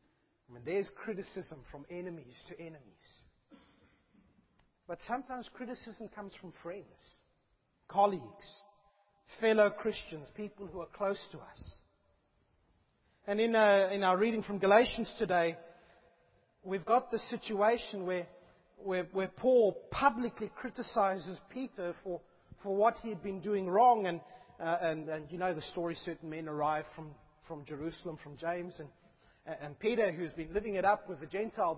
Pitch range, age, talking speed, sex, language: 180-235 Hz, 40-59, 145 wpm, male, English